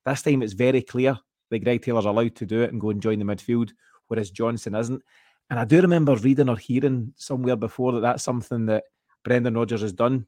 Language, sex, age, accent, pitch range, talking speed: English, male, 30-49, British, 110-130 Hz, 220 wpm